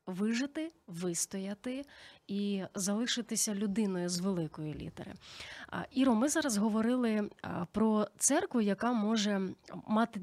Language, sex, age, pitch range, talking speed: Ukrainian, female, 30-49, 190-235 Hz, 100 wpm